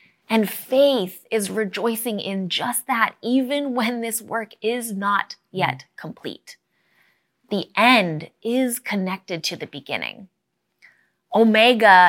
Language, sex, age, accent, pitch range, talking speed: English, female, 20-39, American, 185-235 Hz, 115 wpm